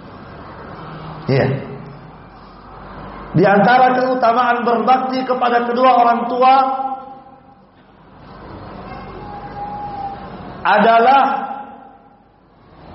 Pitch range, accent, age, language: 225-265 Hz, native, 40-59, Indonesian